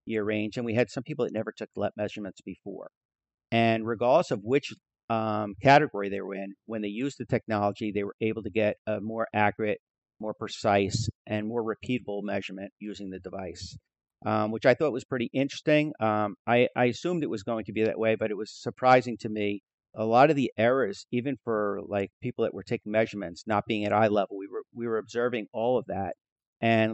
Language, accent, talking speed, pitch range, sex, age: English, American, 210 wpm, 105-120 Hz, male, 50-69